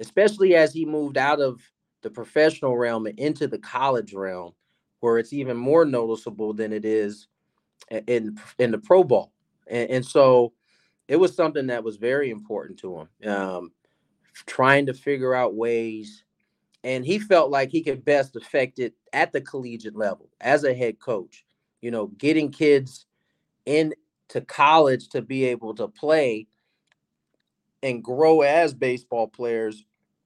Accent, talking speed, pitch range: American, 155 wpm, 110-135 Hz